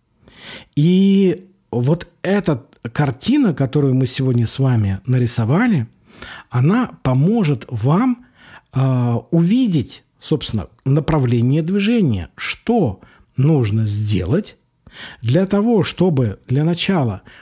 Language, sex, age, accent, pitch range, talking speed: Russian, male, 50-69, native, 120-185 Hz, 90 wpm